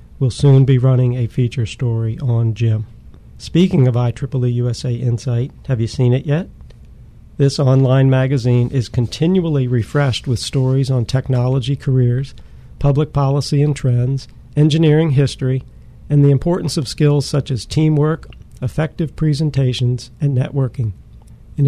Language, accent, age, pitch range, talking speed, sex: English, American, 50-69, 130-145 Hz, 135 wpm, male